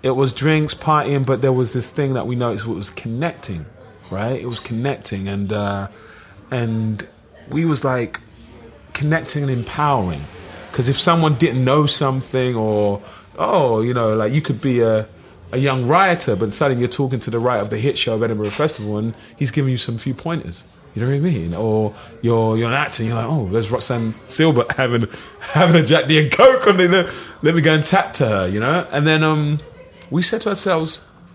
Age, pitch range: 30-49, 105-140 Hz